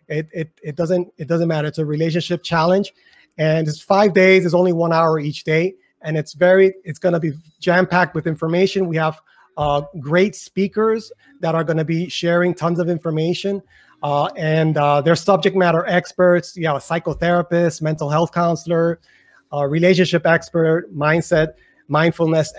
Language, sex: English, male